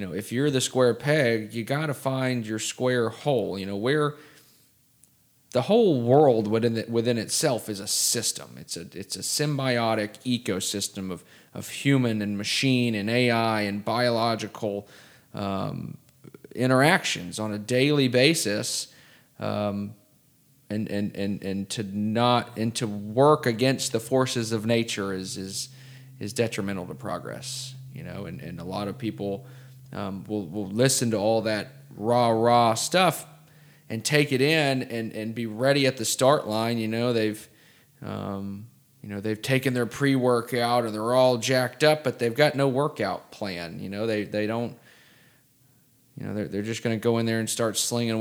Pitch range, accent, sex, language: 105-130 Hz, American, male, English